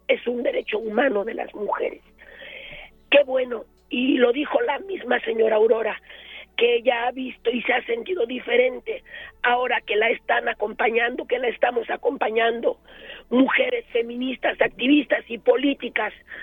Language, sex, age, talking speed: Spanish, female, 40-59, 140 wpm